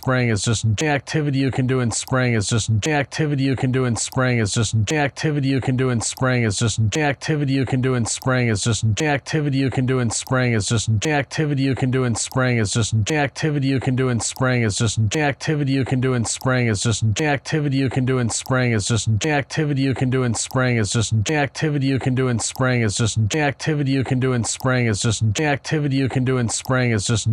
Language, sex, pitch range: English, male, 115-135 Hz